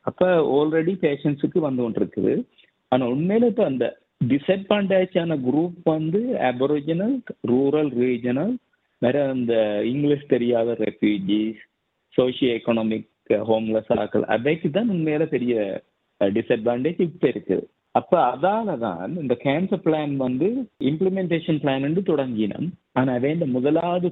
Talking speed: 110 wpm